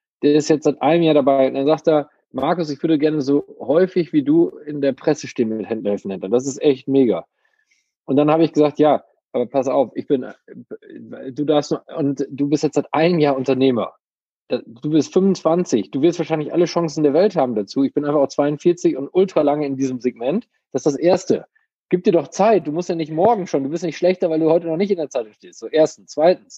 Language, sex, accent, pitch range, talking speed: German, male, German, 140-175 Hz, 235 wpm